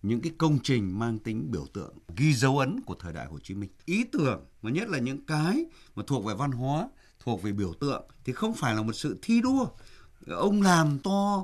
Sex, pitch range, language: male, 115-180 Hz, Vietnamese